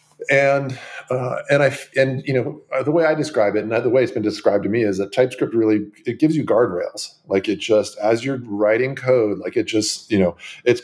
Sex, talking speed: male, 225 wpm